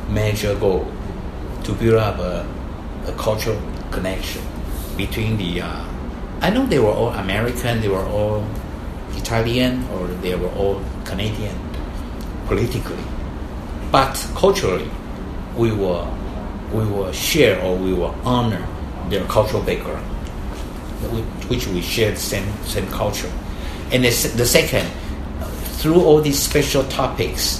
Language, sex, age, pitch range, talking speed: English, male, 60-79, 90-120 Hz, 125 wpm